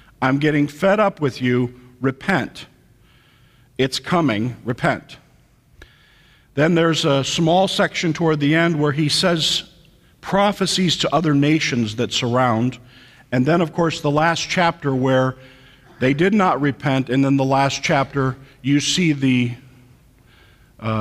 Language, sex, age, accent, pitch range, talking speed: English, male, 50-69, American, 115-145 Hz, 135 wpm